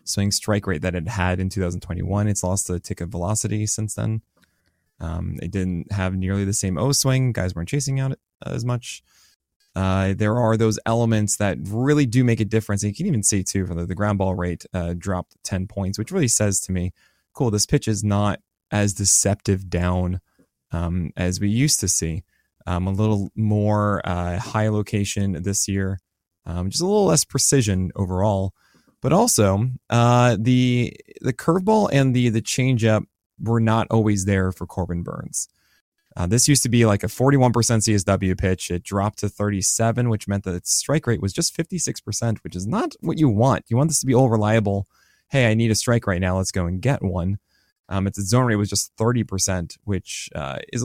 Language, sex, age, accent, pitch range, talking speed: English, male, 20-39, American, 95-120 Hz, 200 wpm